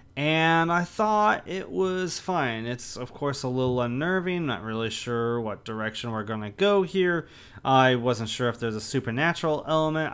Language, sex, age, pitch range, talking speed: English, male, 30-49, 115-160 Hz, 170 wpm